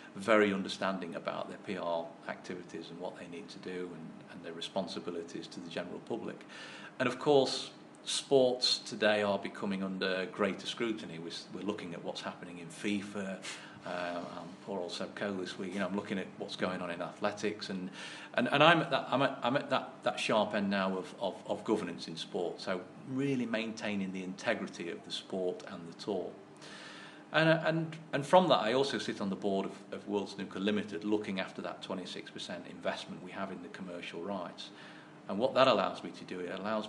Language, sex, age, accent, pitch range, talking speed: English, male, 40-59, British, 95-110 Hz, 195 wpm